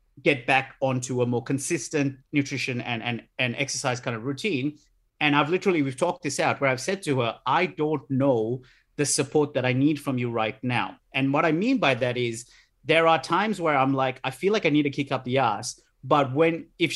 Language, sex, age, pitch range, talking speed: English, male, 30-49, 135-185 Hz, 225 wpm